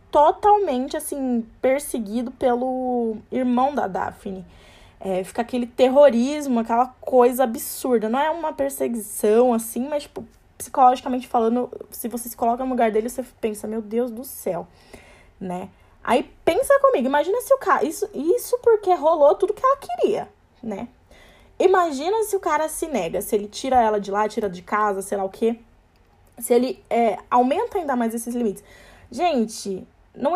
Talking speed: 160 wpm